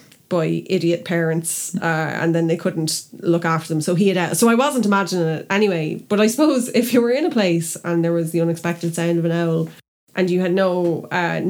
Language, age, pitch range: English, 20-39, 165-200 Hz